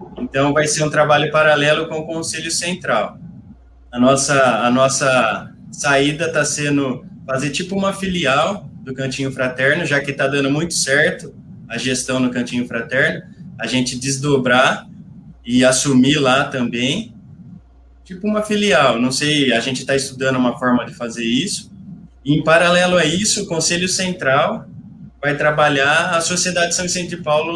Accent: Brazilian